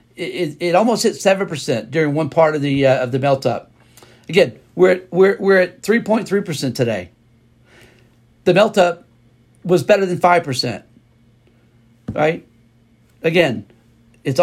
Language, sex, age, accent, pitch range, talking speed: English, male, 50-69, American, 130-180 Hz, 135 wpm